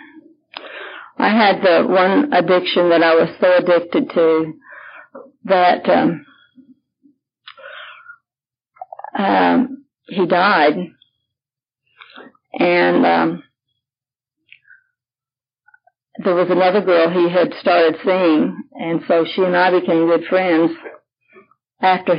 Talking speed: 95 wpm